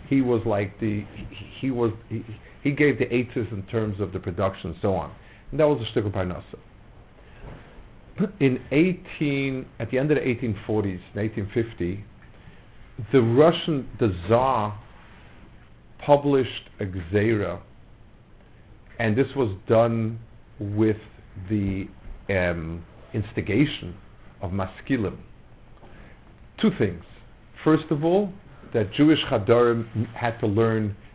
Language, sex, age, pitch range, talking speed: English, male, 50-69, 100-125 Hz, 120 wpm